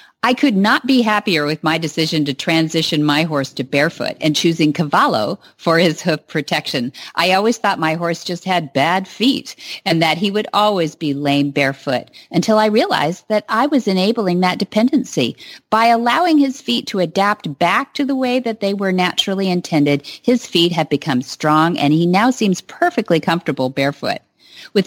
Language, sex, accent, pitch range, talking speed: English, female, American, 160-225 Hz, 180 wpm